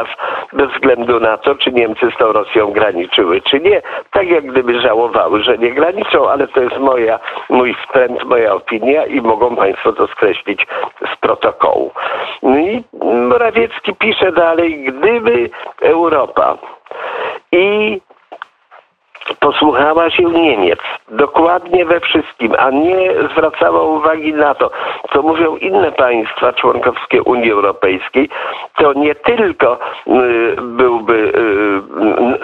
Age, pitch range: 50-69, 145-210 Hz